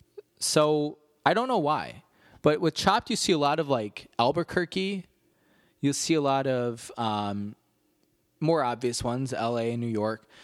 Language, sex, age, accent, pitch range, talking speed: English, male, 20-39, American, 125-190 Hz, 160 wpm